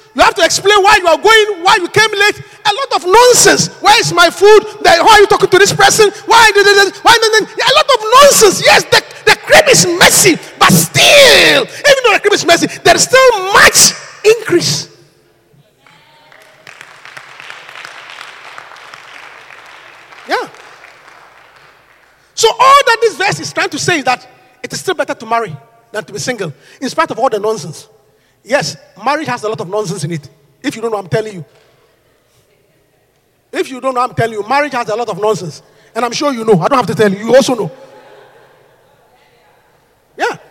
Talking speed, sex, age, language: 190 wpm, male, 40-59, English